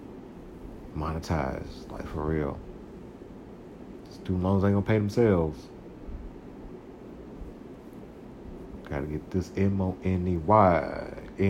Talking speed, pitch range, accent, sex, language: 95 wpm, 80-95 Hz, American, male, English